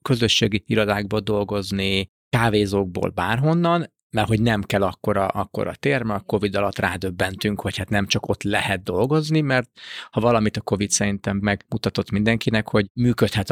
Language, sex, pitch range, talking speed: Hungarian, male, 100-115 Hz, 150 wpm